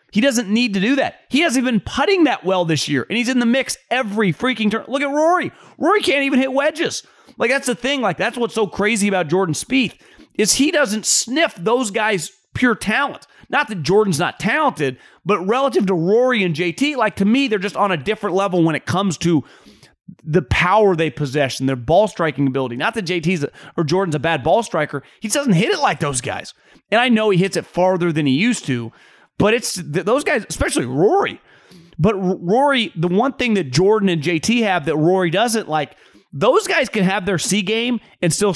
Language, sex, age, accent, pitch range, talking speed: English, male, 30-49, American, 170-240 Hz, 215 wpm